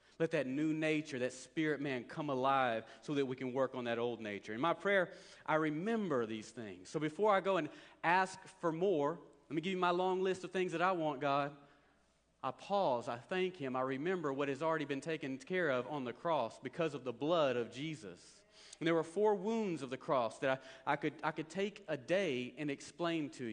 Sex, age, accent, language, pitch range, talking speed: male, 40-59, American, English, 140-190 Hz, 225 wpm